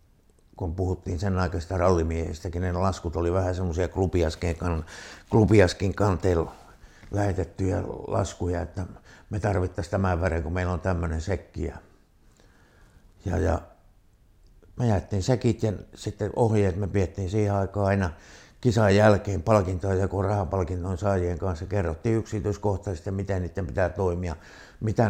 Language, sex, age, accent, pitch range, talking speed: Finnish, male, 60-79, native, 90-105 Hz, 125 wpm